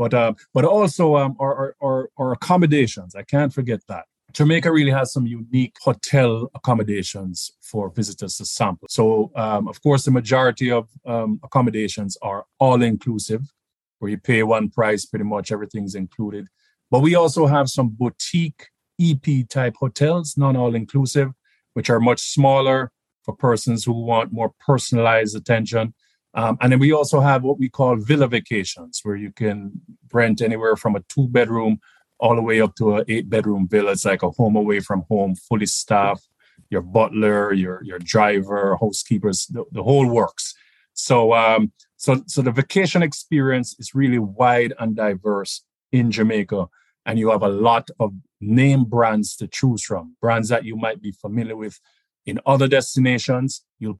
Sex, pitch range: male, 105-130 Hz